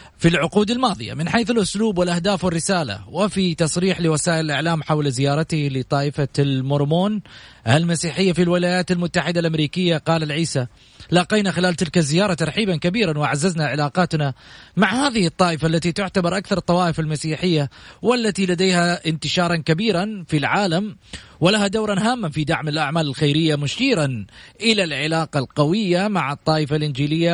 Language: Arabic